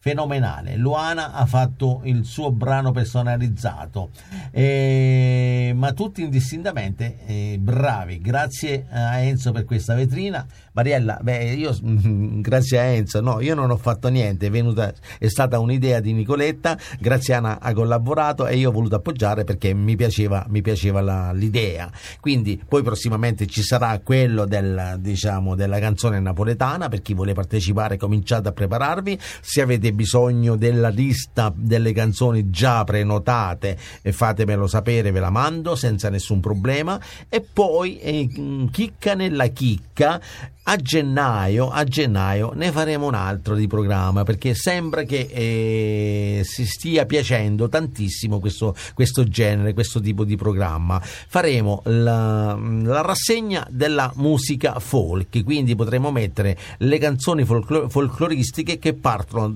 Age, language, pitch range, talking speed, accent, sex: 50-69, Italian, 105-130 Hz, 140 wpm, native, male